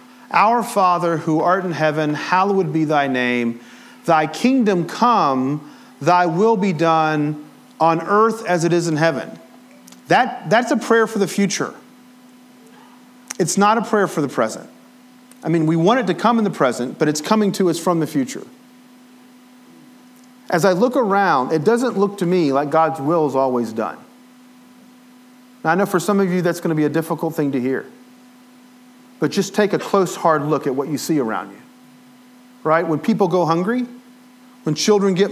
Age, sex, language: 40-59, male, English